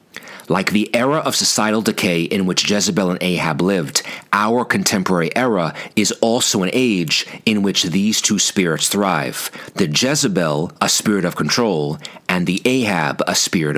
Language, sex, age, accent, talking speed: English, male, 40-59, American, 155 wpm